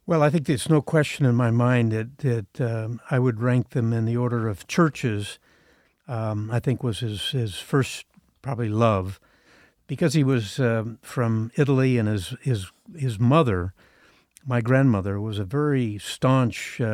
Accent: American